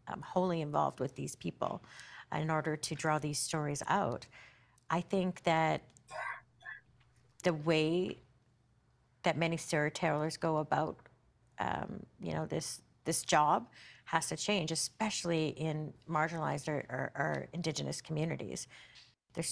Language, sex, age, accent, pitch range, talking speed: English, female, 40-59, American, 150-175 Hz, 130 wpm